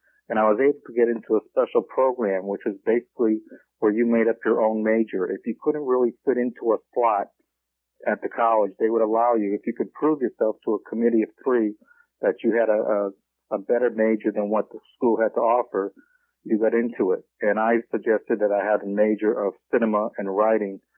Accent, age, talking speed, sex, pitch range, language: American, 50-69, 215 wpm, male, 105-120 Hz, English